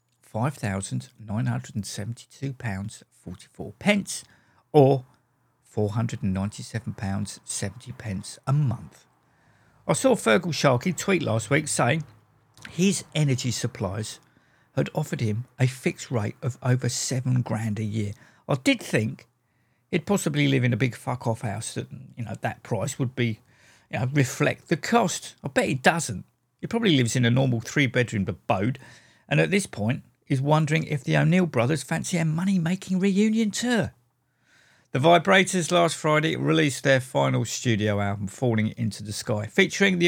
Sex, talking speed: male, 140 wpm